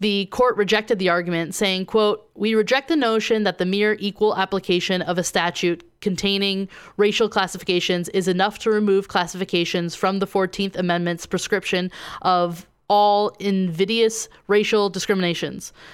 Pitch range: 180-210 Hz